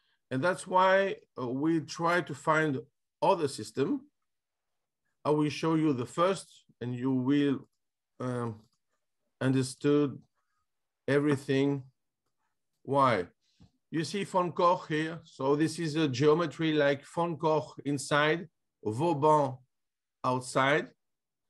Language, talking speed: Greek, 105 wpm